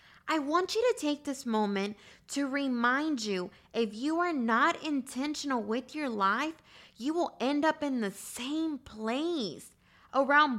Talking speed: 155 wpm